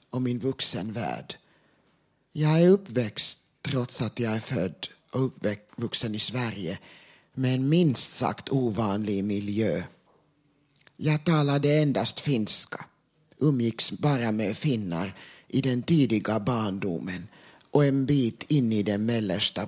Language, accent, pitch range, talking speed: Swedish, Finnish, 115-160 Hz, 130 wpm